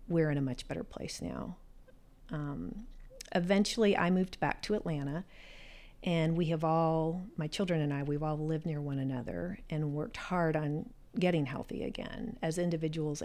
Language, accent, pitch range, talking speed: English, American, 155-190 Hz, 170 wpm